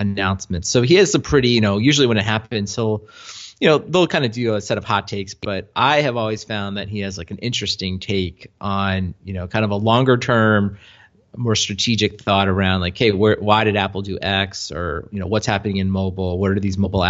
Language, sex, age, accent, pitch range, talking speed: English, male, 30-49, American, 95-110 Hz, 235 wpm